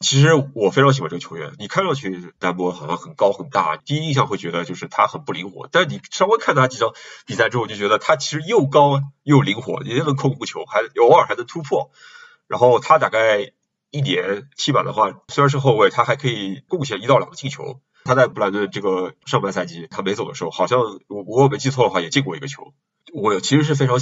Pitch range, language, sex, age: 95-145 Hz, Chinese, male, 20-39